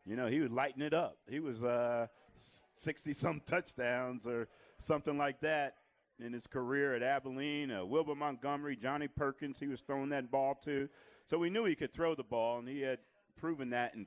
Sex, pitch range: male, 115-140 Hz